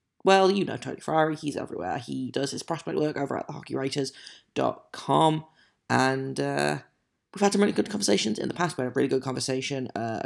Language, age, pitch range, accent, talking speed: English, 20-39, 110-150 Hz, British, 195 wpm